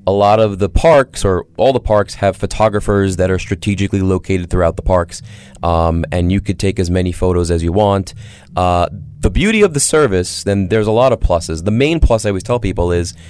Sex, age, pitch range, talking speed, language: male, 30-49, 90-110 Hz, 220 wpm, English